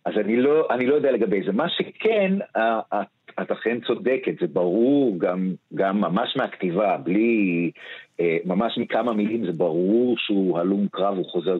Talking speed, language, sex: 155 wpm, Hebrew, male